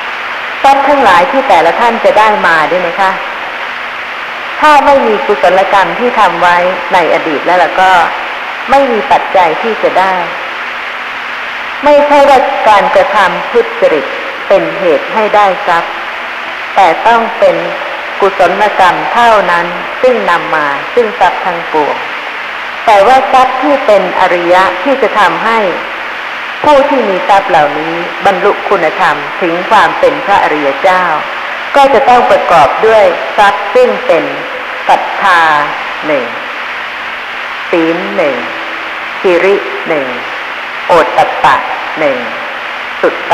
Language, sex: Thai, female